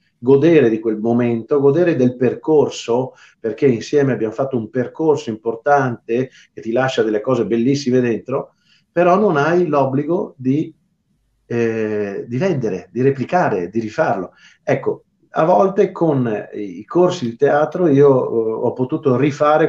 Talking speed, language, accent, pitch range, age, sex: 130 wpm, Italian, native, 120-150 Hz, 40-59, male